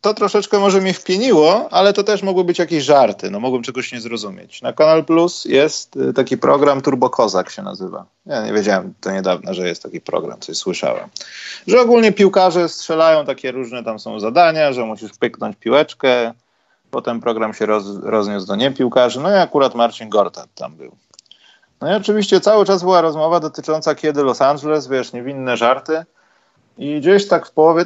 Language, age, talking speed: Polish, 30-49, 180 wpm